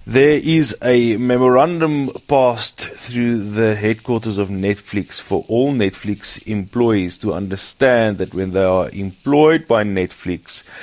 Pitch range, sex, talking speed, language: 100-120 Hz, male, 125 wpm, English